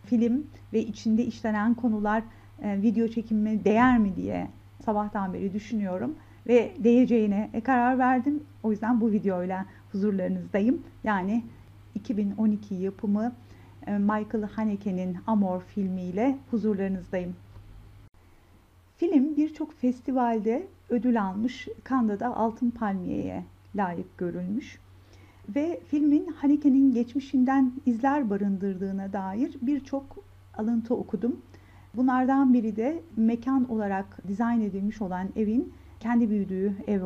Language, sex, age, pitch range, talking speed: Turkish, female, 50-69, 195-235 Hz, 100 wpm